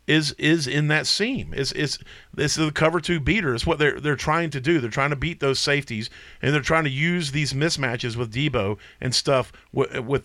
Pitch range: 120-165 Hz